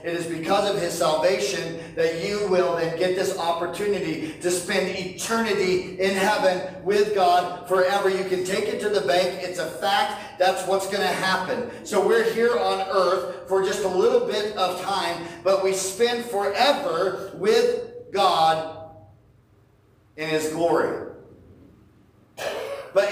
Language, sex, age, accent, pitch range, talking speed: English, male, 40-59, American, 155-210 Hz, 150 wpm